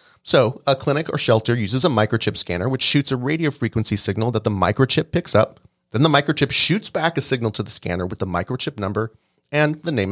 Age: 30-49